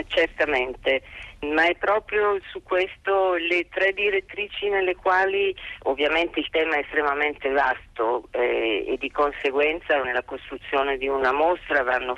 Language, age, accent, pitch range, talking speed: Italian, 40-59, native, 130-155 Hz, 135 wpm